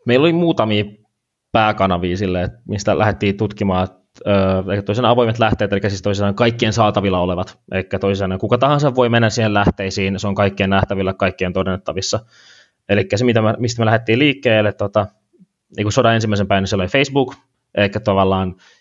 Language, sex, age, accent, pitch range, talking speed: Finnish, male, 20-39, native, 100-120 Hz, 145 wpm